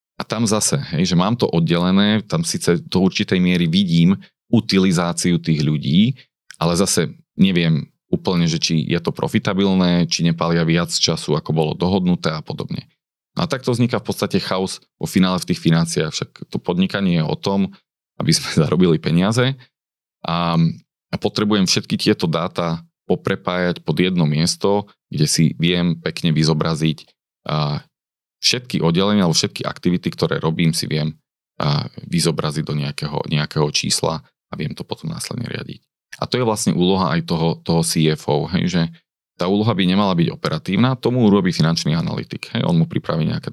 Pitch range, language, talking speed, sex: 80-105 Hz, Slovak, 165 wpm, male